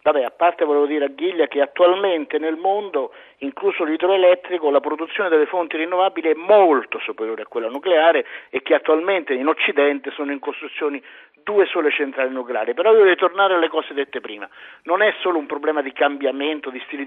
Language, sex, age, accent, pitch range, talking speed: Italian, male, 50-69, native, 150-205 Hz, 185 wpm